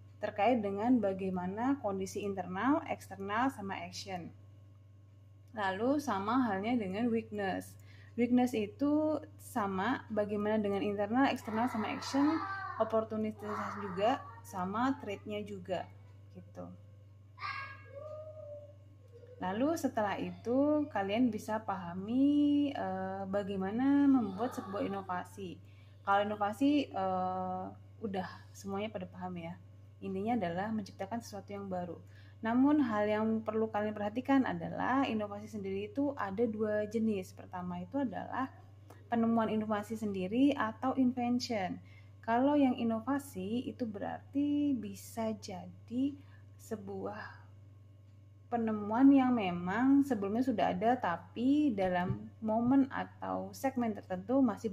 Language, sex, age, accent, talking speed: Indonesian, female, 20-39, native, 105 wpm